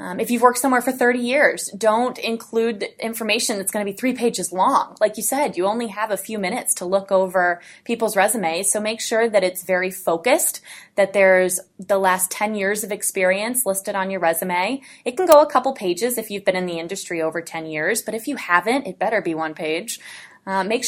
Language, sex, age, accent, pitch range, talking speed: English, female, 20-39, American, 185-225 Hz, 220 wpm